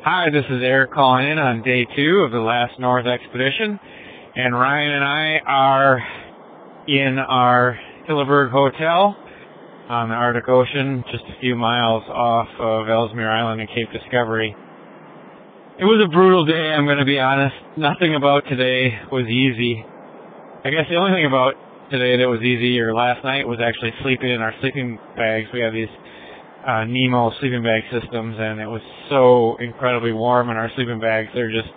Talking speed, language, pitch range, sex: 175 wpm, English, 115-135 Hz, male